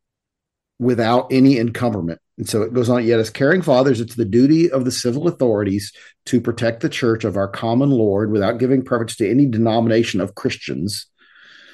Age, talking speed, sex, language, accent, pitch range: 50-69, 180 wpm, male, English, American, 100-125 Hz